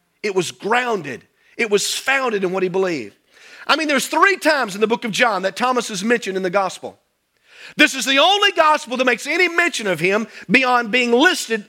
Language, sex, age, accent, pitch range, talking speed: English, male, 40-59, American, 215-270 Hz, 210 wpm